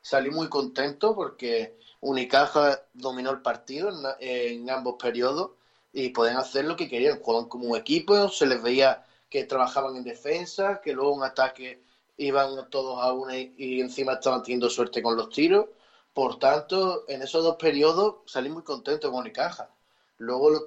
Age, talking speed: 20-39, 165 wpm